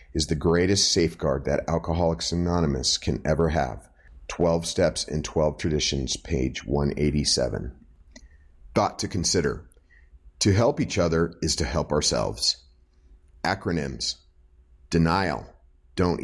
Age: 40-59